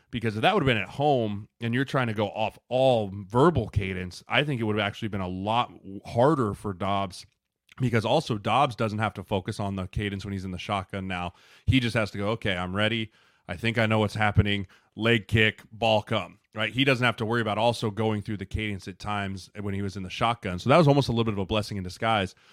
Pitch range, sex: 100-115 Hz, male